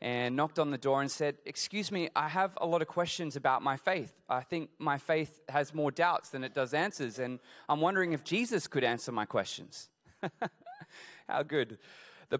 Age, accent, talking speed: 20-39, Australian, 200 wpm